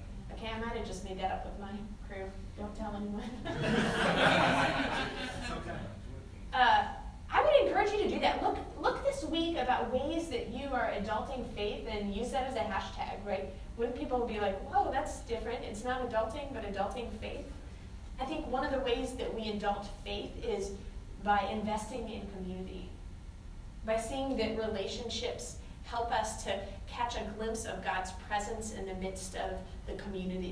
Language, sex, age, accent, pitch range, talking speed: English, female, 20-39, American, 190-240 Hz, 175 wpm